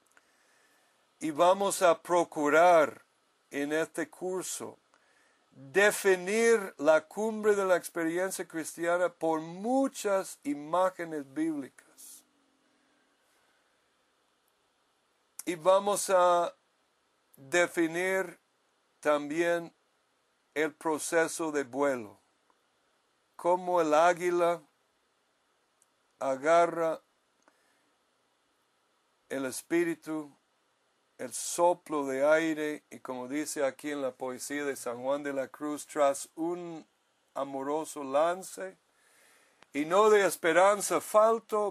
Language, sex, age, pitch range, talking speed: English, male, 60-79, 145-185 Hz, 85 wpm